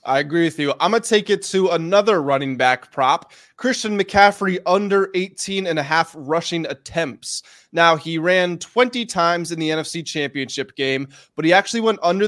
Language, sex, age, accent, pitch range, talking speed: English, male, 20-39, American, 160-200 Hz, 185 wpm